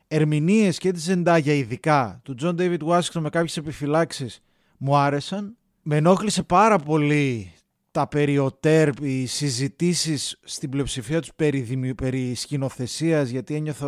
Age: 30-49